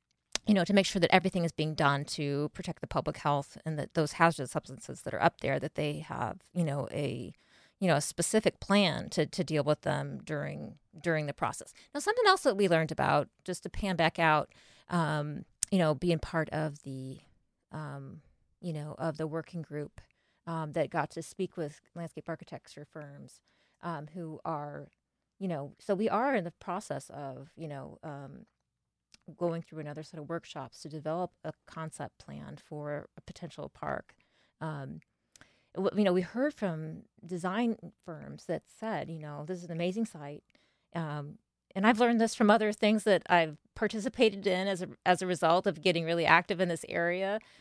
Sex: female